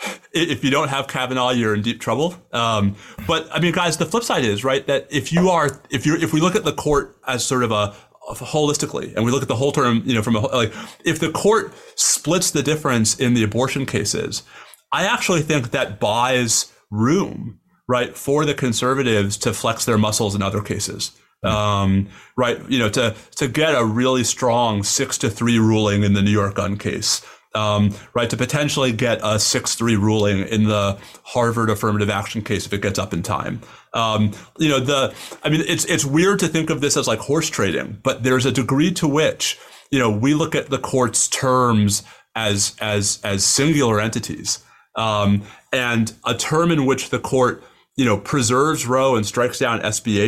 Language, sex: English, male